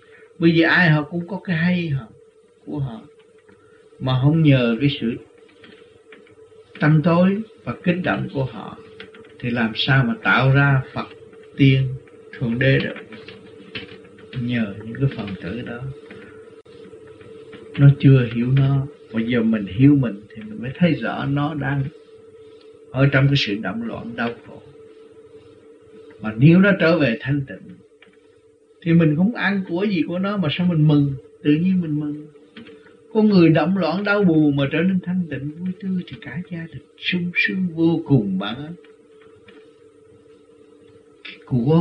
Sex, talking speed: male, 155 wpm